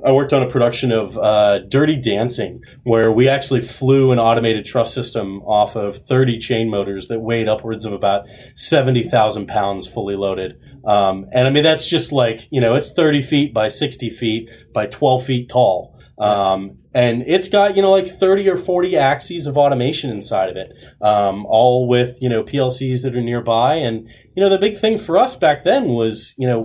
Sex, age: male, 30-49